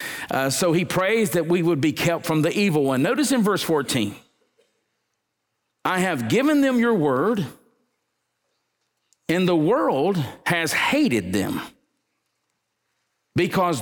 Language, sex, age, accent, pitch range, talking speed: English, male, 50-69, American, 150-225 Hz, 130 wpm